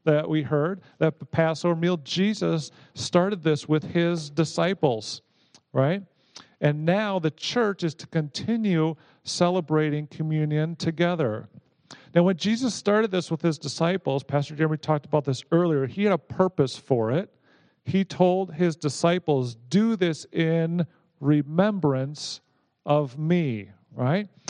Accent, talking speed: American, 135 wpm